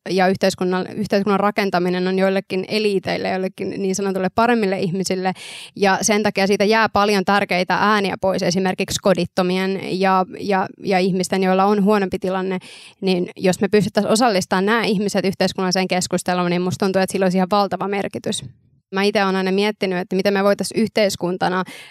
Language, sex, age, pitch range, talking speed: Finnish, female, 20-39, 185-205 Hz, 160 wpm